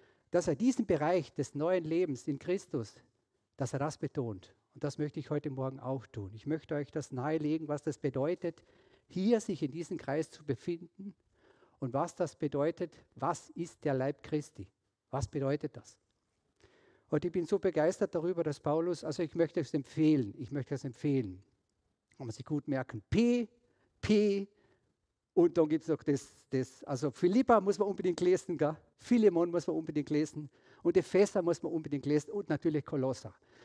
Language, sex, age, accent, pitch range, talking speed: German, male, 50-69, German, 135-175 Hz, 180 wpm